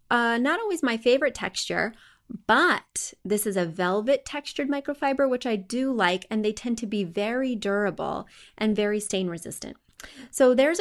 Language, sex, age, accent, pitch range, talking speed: English, female, 30-49, American, 185-260 Hz, 165 wpm